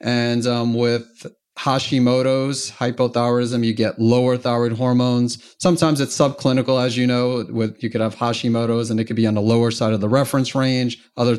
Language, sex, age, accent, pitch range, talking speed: English, male, 30-49, American, 115-135 Hz, 180 wpm